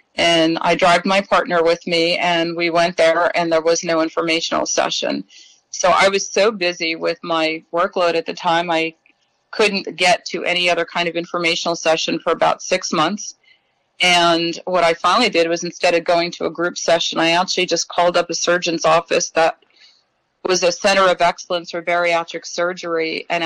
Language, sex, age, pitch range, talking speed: English, female, 40-59, 165-180 Hz, 185 wpm